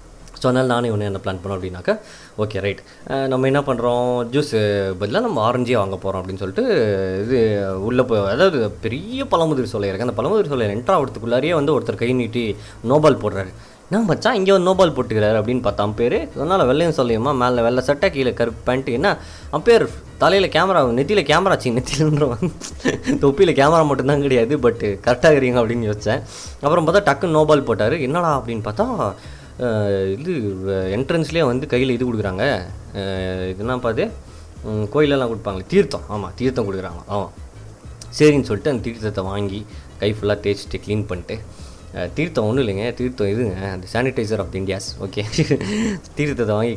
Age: 20-39